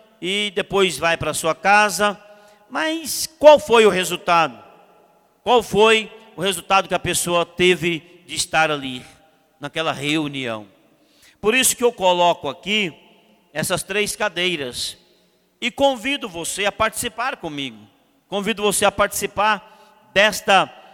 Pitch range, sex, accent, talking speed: 170-215 Hz, male, Brazilian, 125 wpm